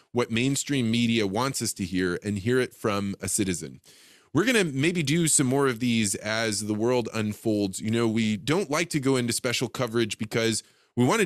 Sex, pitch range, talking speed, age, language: male, 100-130 Hz, 205 wpm, 20-39, English